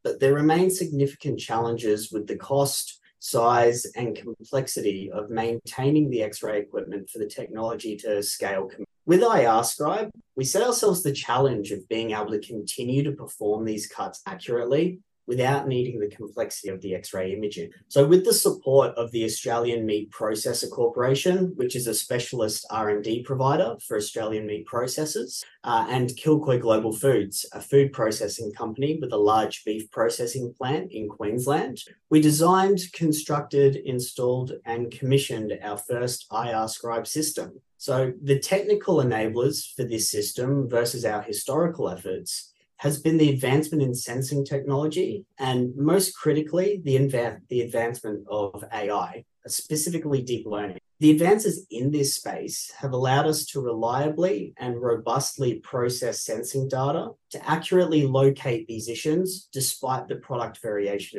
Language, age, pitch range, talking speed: English, 30-49, 115-155 Hz, 145 wpm